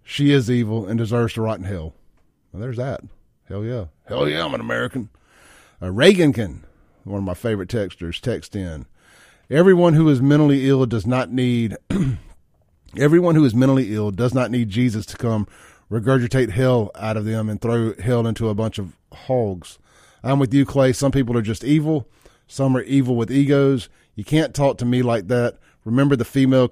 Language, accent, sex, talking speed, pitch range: English, American, male, 190 wpm, 105-135 Hz